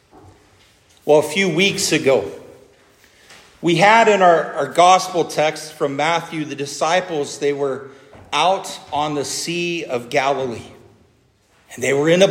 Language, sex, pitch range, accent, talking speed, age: English, male, 100-160 Hz, American, 140 wpm, 50-69